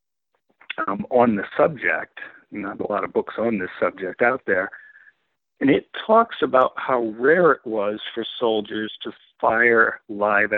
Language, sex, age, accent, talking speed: English, male, 60-79, American, 155 wpm